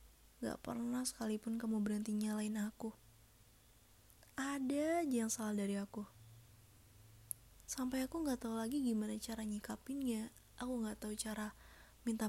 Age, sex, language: 20-39, female, Indonesian